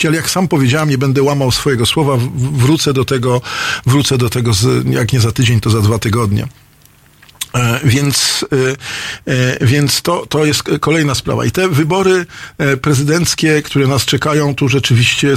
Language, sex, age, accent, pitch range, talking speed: Polish, male, 50-69, native, 120-150 Hz, 155 wpm